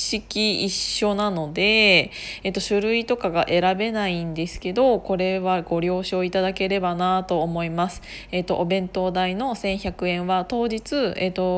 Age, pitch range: 20-39, 185-240 Hz